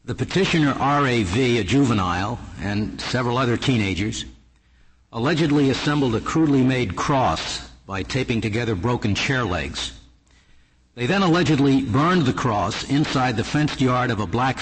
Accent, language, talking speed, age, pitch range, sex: American, English, 140 wpm, 60-79, 105-140 Hz, male